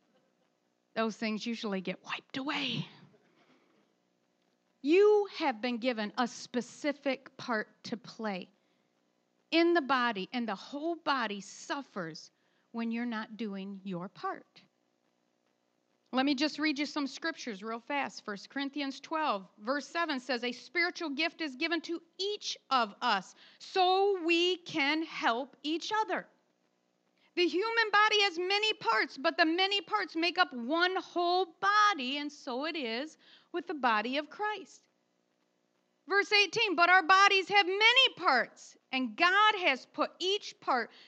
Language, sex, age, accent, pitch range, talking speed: English, female, 40-59, American, 220-350 Hz, 140 wpm